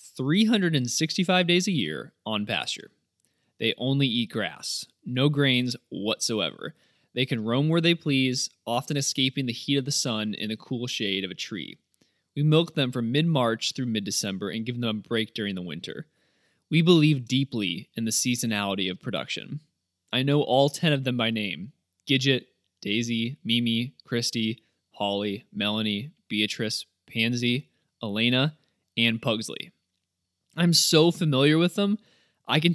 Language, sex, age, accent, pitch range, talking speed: English, male, 20-39, American, 115-145 Hz, 155 wpm